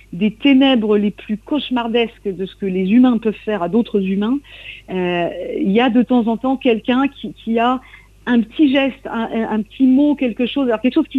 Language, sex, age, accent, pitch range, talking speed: French, female, 50-69, French, 175-230 Hz, 210 wpm